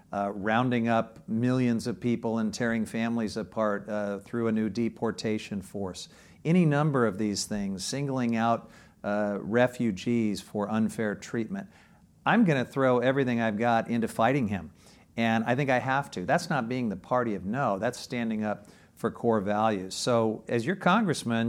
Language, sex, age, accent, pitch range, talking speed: English, male, 50-69, American, 110-125 Hz, 170 wpm